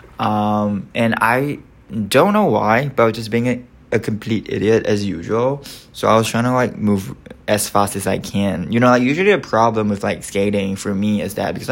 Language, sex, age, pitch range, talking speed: English, male, 20-39, 95-120 Hz, 220 wpm